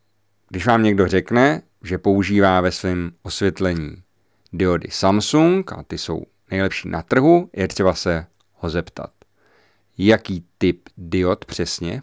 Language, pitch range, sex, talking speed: Czech, 90-110 Hz, male, 130 wpm